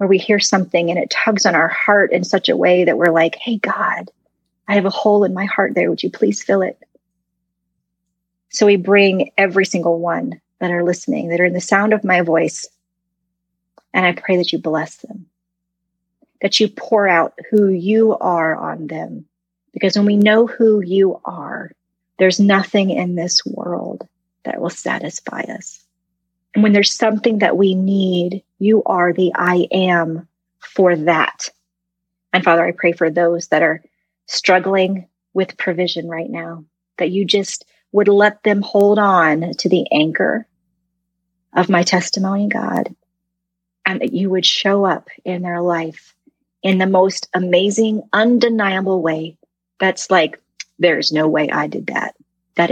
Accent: American